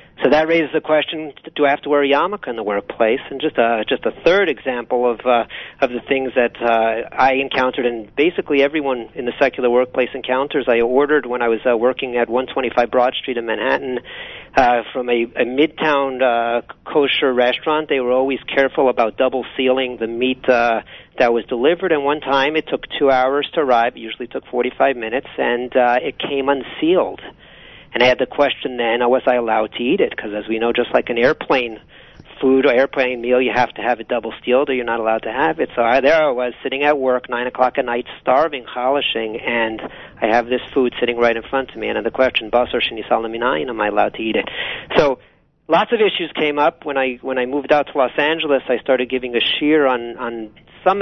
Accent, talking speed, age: American, 225 wpm, 40-59